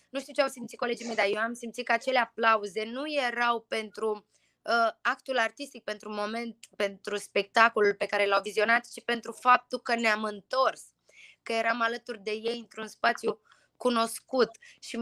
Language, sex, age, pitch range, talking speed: Romanian, female, 20-39, 215-250 Hz, 170 wpm